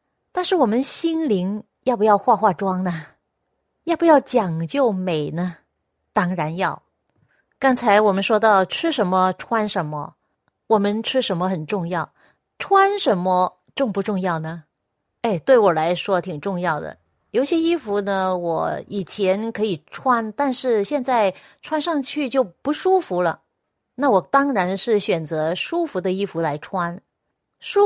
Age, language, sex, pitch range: 30-49, Chinese, female, 185-255 Hz